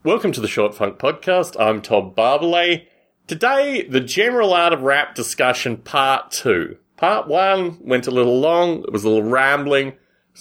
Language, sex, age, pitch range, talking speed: English, male, 30-49, 115-175 Hz, 175 wpm